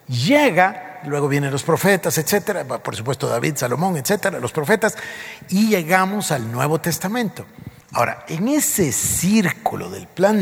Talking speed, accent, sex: 140 wpm, Mexican, male